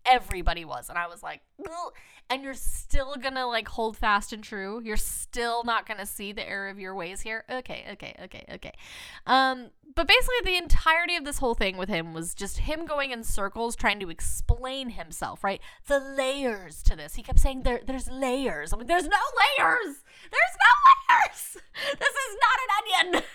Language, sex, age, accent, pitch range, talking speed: English, female, 10-29, American, 205-290 Hz, 200 wpm